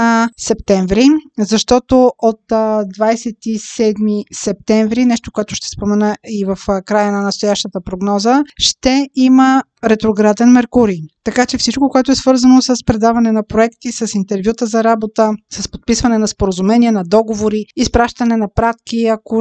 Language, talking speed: Bulgarian, 135 wpm